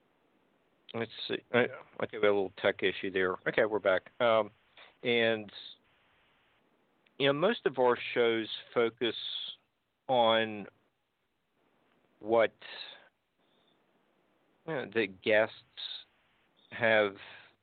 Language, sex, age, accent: English, male, 50-69, American